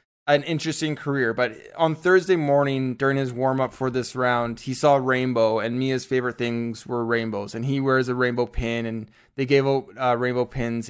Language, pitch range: English, 120-155 Hz